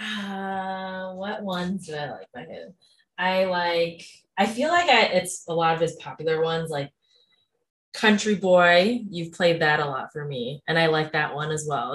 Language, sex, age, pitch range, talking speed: English, female, 20-39, 150-185 Hz, 175 wpm